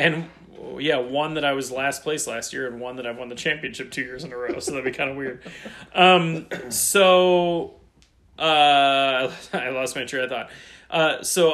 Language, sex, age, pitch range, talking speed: English, male, 30-49, 115-145 Hz, 205 wpm